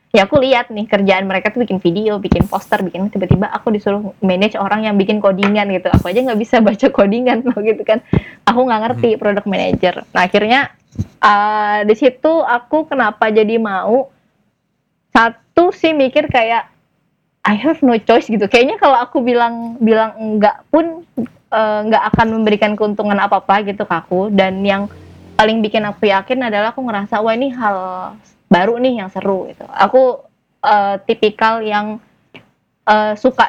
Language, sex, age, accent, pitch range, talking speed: Indonesian, female, 20-39, native, 190-225 Hz, 165 wpm